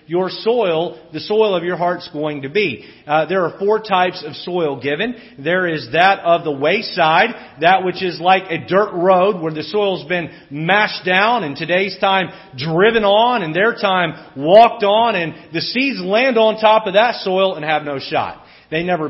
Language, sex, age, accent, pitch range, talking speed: English, male, 40-59, American, 160-210 Hz, 195 wpm